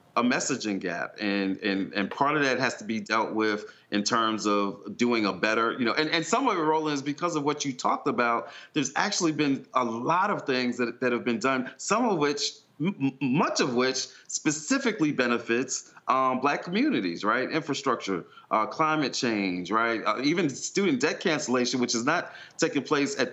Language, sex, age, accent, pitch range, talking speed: English, male, 30-49, American, 110-145 Hz, 195 wpm